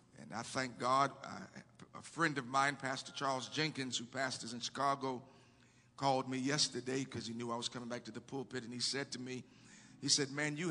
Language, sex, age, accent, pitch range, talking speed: English, male, 50-69, American, 130-165 Hz, 205 wpm